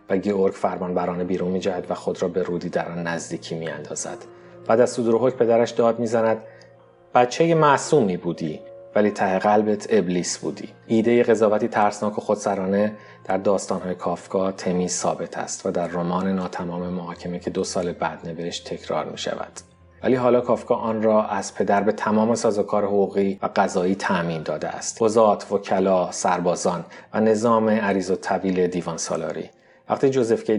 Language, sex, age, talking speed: Persian, male, 30-49, 155 wpm